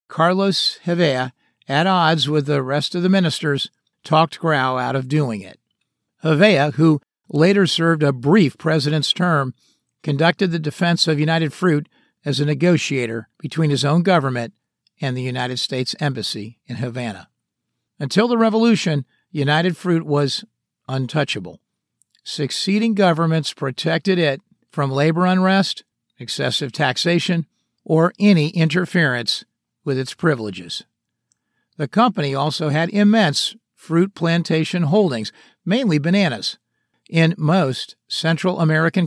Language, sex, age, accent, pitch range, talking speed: English, male, 50-69, American, 140-175 Hz, 125 wpm